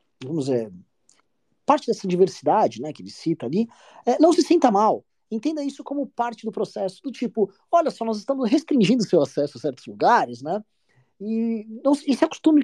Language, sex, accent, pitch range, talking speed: Portuguese, male, Brazilian, 165-265 Hz, 185 wpm